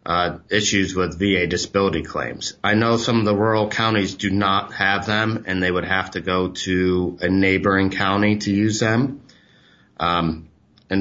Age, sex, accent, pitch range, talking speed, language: 30-49, male, American, 95-115 Hz, 170 wpm, English